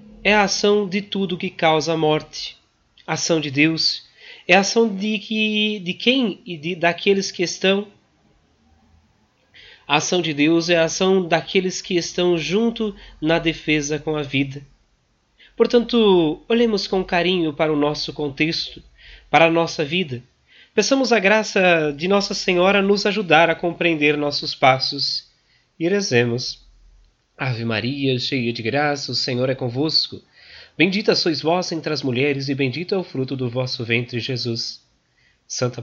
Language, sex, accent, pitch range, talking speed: Portuguese, male, Brazilian, 125-180 Hz, 150 wpm